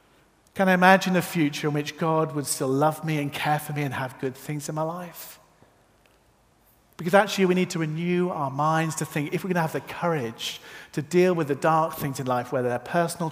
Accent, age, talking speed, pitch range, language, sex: British, 40-59, 230 wpm, 135-175 Hz, English, male